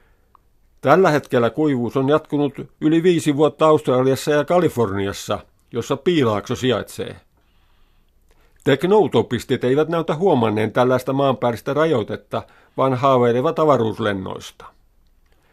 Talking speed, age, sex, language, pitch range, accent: 95 wpm, 50-69, male, Finnish, 115-145 Hz, native